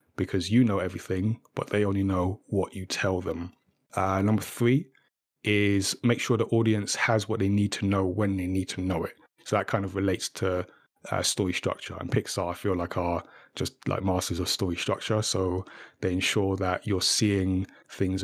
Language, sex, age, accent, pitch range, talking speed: English, male, 30-49, British, 95-110 Hz, 195 wpm